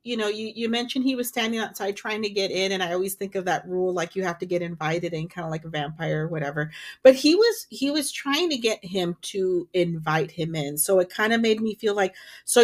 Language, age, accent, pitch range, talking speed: English, 40-59, American, 185-230 Hz, 265 wpm